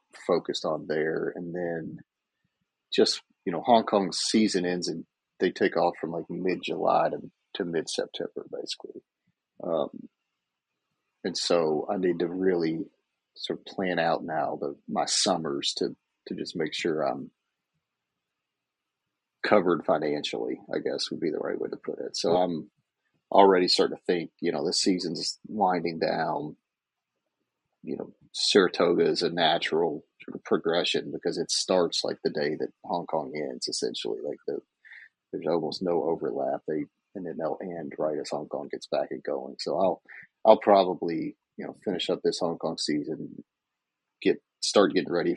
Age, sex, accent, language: 40-59, male, American, English